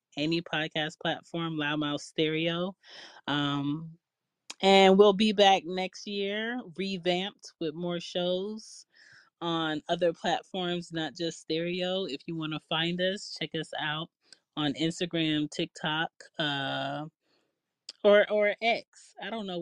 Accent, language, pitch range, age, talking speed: American, English, 160-195 Hz, 30-49, 130 wpm